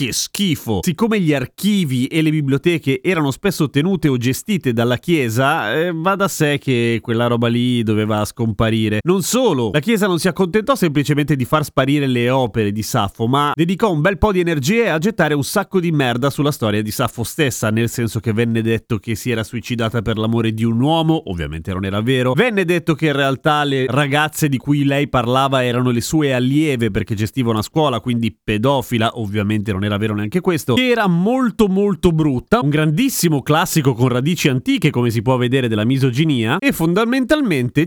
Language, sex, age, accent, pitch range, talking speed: Italian, male, 30-49, native, 120-165 Hz, 190 wpm